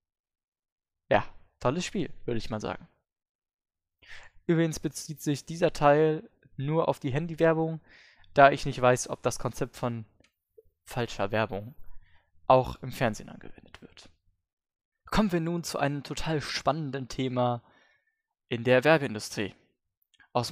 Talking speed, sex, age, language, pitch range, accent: 125 wpm, male, 20-39, German, 120-160 Hz, German